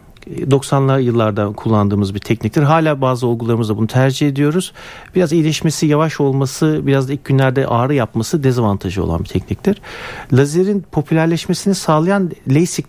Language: Turkish